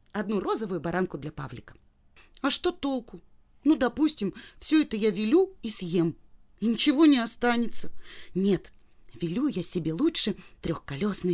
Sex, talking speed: female, 140 wpm